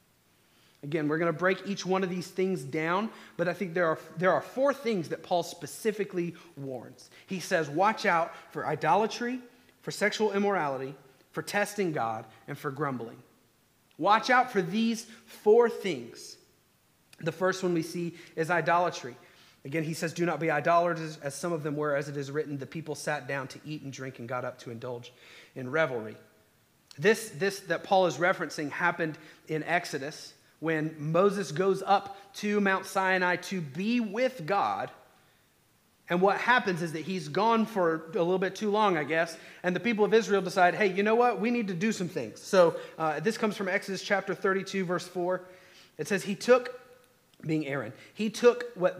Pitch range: 150-195 Hz